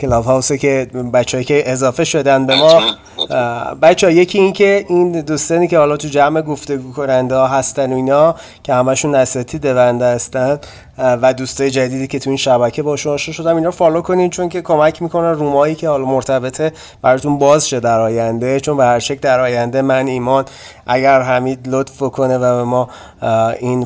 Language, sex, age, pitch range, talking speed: Persian, male, 30-49, 130-155 Hz, 180 wpm